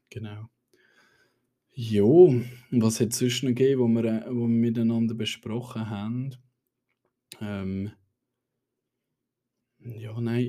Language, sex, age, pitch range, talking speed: German, male, 20-39, 100-115 Hz, 110 wpm